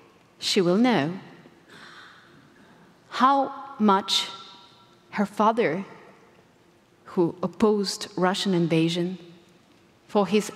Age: 30-49